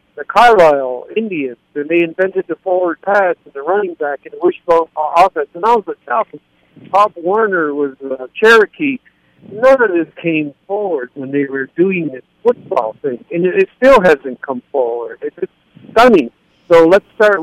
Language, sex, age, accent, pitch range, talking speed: English, male, 60-79, American, 140-190 Hz, 170 wpm